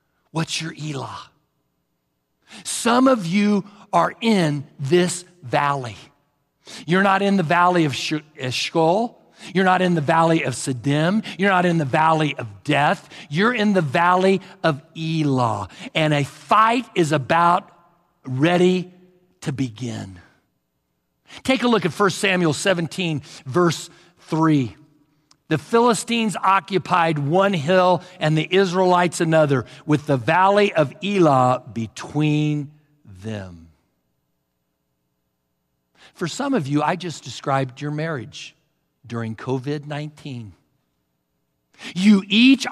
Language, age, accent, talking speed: English, 50-69, American, 115 wpm